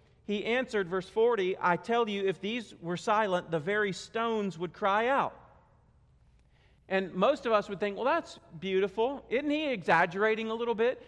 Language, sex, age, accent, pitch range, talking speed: English, male, 40-59, American, 190-240 Hz, 175 wpm